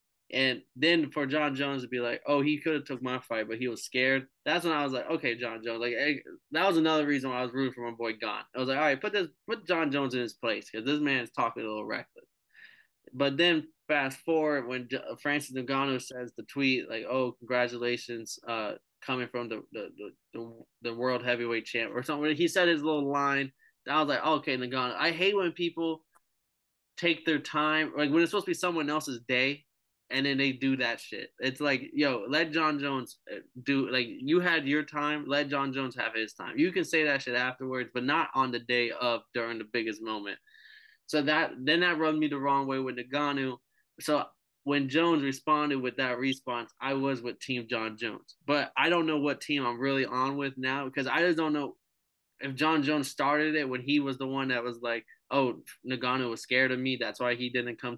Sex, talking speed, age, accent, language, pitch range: male, 225 wpm, 20-39, American, English, 125-150 Hz